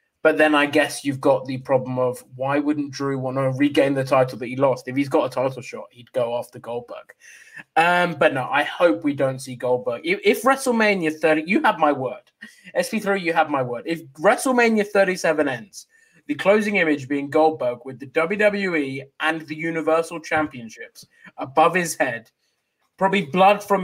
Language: English